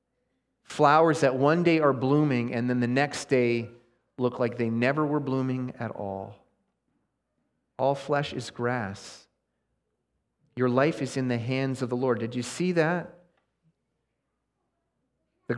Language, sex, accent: English, male, American